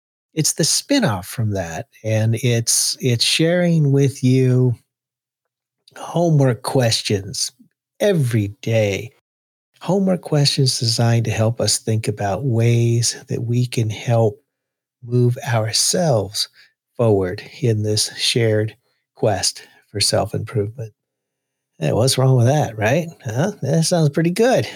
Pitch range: 115-145 Hz